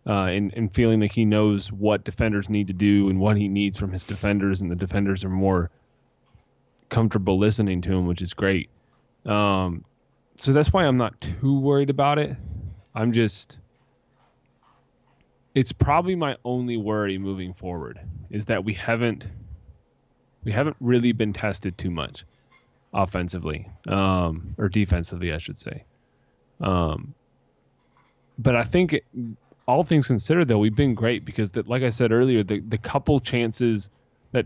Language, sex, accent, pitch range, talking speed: English, male, American, 100-120 Hz, 160 wpm